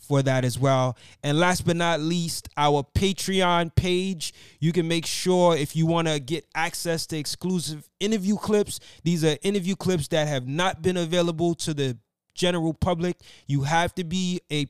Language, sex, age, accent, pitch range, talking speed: English, male, 20-39, American, 145-180 Hz, 175 wpm